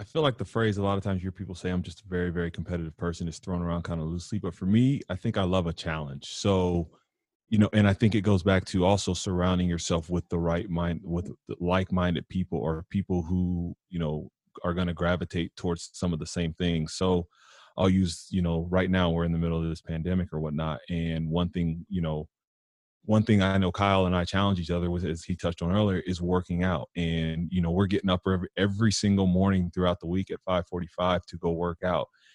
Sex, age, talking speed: male, 30-49, 235 wpm